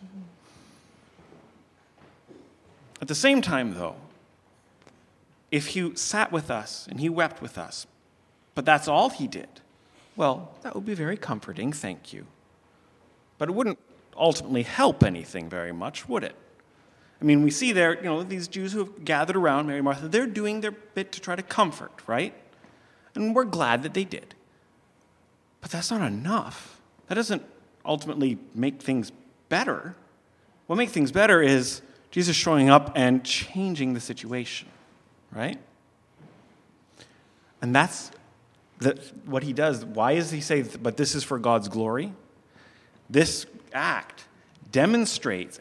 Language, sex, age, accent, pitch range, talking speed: English, male, 40-59, American, 130-190 Hz, 145 wpm